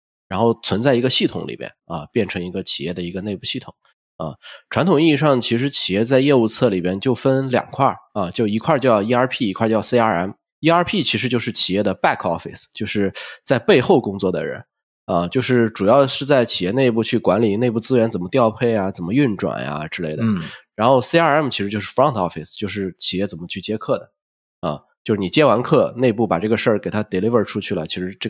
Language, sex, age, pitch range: Chinese, male, 20-39, 95-125 Hz